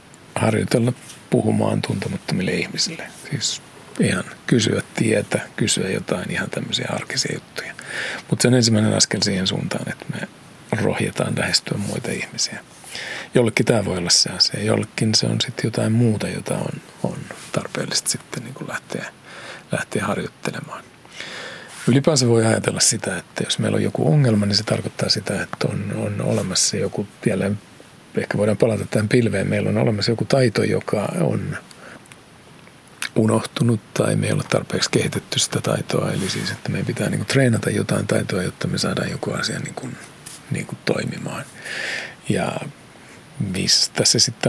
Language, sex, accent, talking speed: Finnish, male, native, 145 wpm